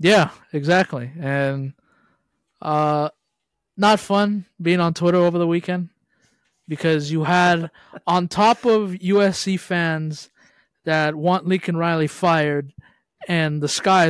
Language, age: English, 20-39